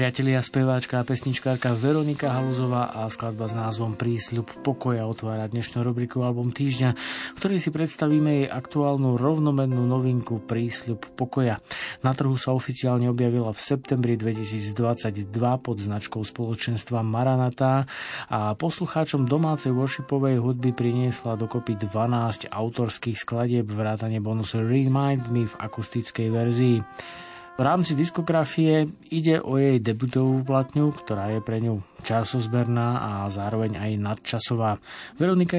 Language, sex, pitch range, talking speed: Slovak, male, 110-130 Hz, 125 wpm